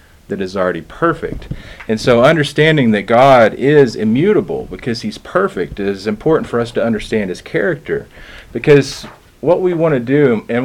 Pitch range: 100-125 Hz